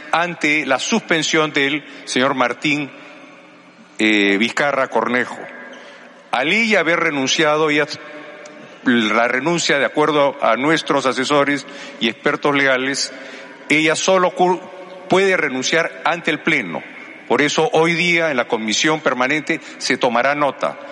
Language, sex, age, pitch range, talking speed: Spanish, male, 50-69, 130-185 Hz, 120 wpm